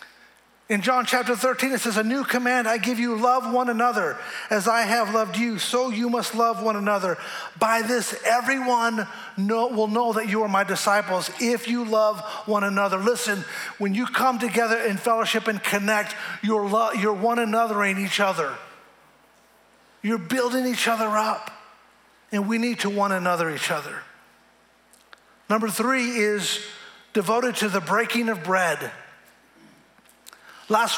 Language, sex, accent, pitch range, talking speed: English, male, American, 205-235 Hz, 155 wpm